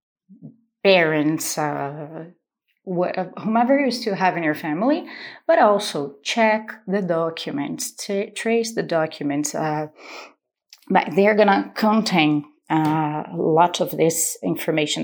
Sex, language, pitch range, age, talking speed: female, English, 170-250 Hz, 30-49, 110 wpm